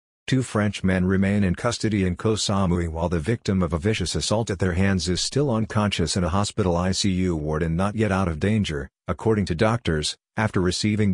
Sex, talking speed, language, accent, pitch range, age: male, 200 wpm, English, American, 90-105 Hz, 50-69